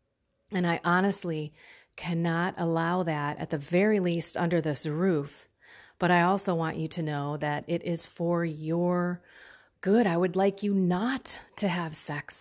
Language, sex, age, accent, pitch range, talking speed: English, female, 30-49, American, 165-220 Hz, 165 wpm